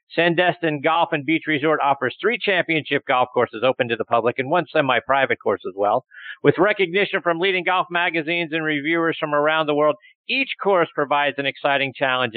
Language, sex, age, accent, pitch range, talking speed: English, male, 50-69, American, 120-160 Hz, 185 wpm